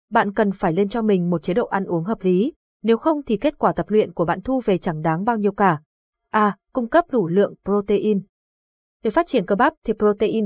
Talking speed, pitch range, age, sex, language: 245 wpm, 190-240 Hz, 20-39, female, Vietnamese